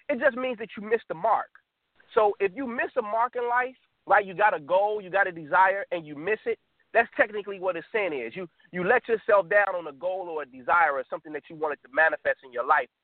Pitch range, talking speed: 180-245 Hz, 260 wpm